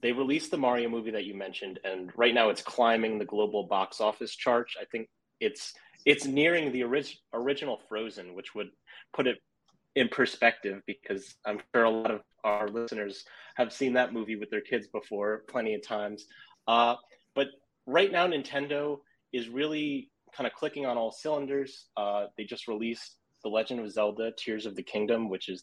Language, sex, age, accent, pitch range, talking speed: English, male, 30-49, American, 110-135 Hz, 185 wpm